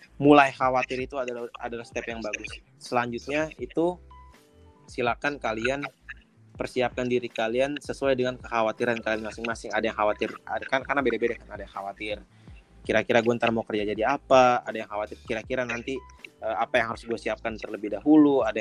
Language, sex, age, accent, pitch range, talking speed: Indonesian, male, 20-39, native, 115-140 Hz, 160 wpm